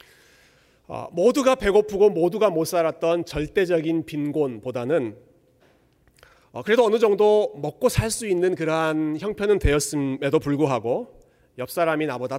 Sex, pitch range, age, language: male, 130-175 Hz, 30-49, Korean